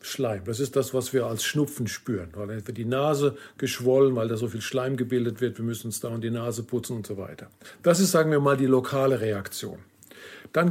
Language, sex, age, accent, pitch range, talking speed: German, male, 50-69, German, 120-155 Hz, 230 wpm